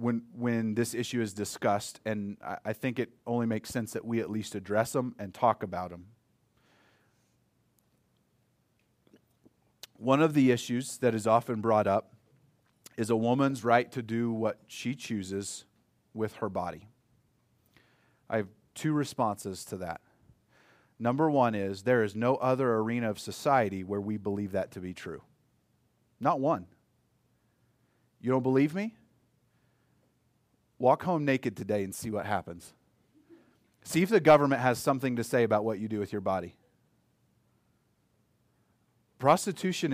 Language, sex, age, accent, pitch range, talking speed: English, male, 30-49, American, 110-145 Hz, 145 wpm